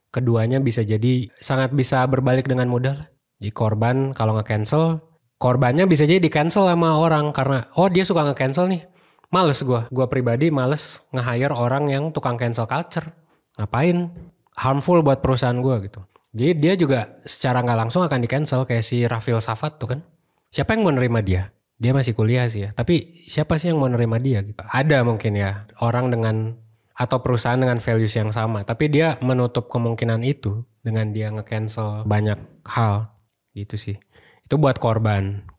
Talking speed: 165 wpm